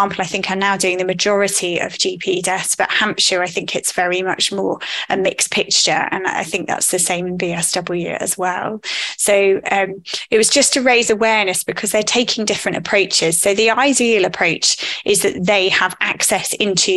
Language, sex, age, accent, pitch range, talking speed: English, female, 20-39, British, 185-210 Hz, 190 wpm